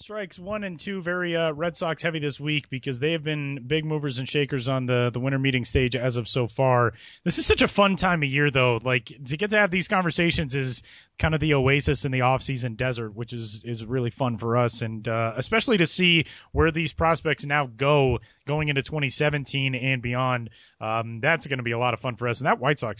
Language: English